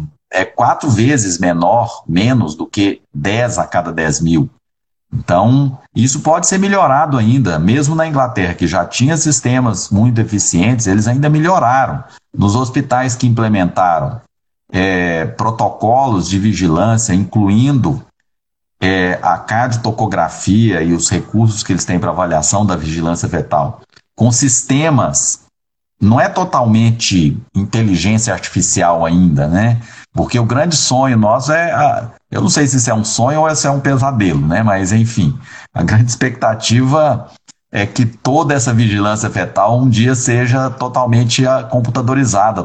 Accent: Brazilian